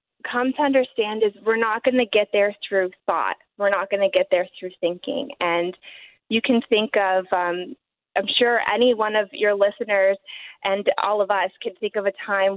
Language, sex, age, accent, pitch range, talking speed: English, female, 20-39, American, 195-235 Hz, 200 wpm